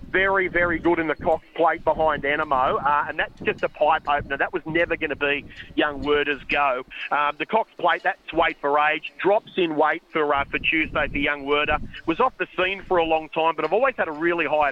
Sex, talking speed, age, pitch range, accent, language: male, 235 wpm, 40-59, 155-185 Hz, Australian, English